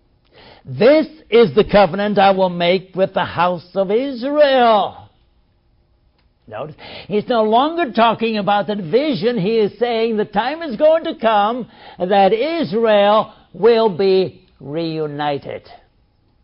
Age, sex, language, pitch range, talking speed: 60-79, male, English, 155-220 Hz, 125 wpm